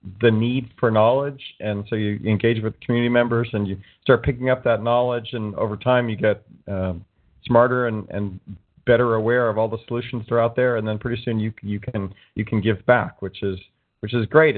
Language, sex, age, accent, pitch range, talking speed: English, male, 40-59, American, 105-120 Hz, 220 wpm